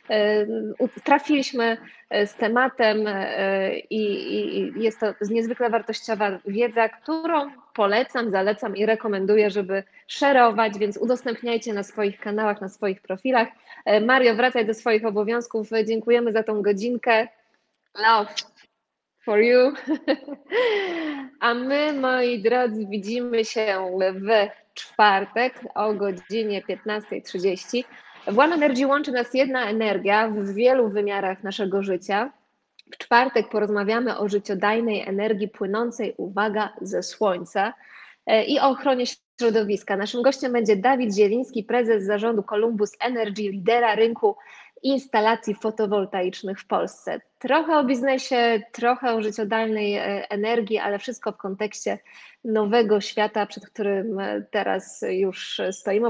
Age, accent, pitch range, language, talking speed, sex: 20-39, native, 205-245 Hz, Polish, 115 wpm, female